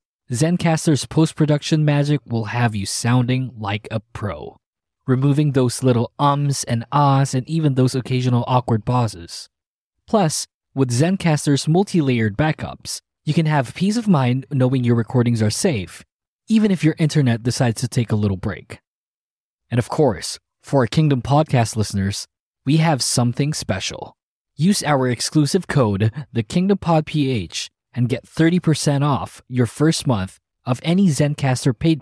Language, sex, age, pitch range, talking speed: English, male, 20-39, 115-150 Hz, 145 wpm